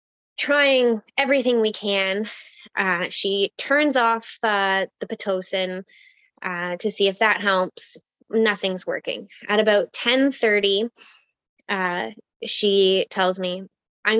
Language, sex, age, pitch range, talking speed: English, female, 10-29, 185-220 Hz, 115 wpm